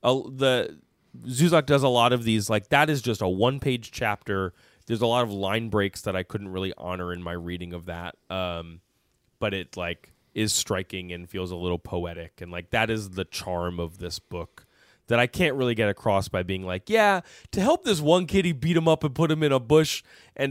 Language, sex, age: English, male, 20-39